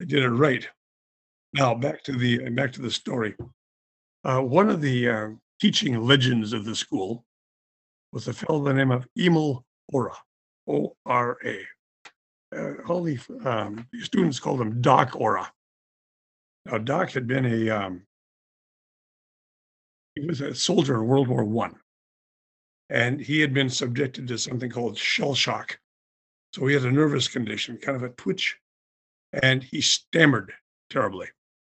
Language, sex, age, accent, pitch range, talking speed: English, male, 50-69, American, 105-140 Hz, 150 wpm